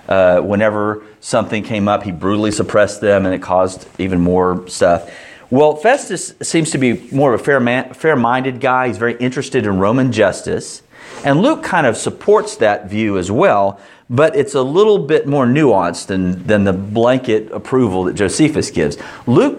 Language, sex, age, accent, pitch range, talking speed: English, male, 40-59, American, 105-155 Hz, 175 wpm